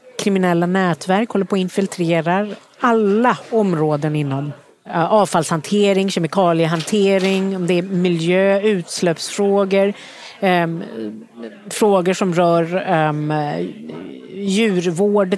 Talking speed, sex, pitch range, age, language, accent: 80 wpm, female, 165-200 Hz, 40-59, Swedish, native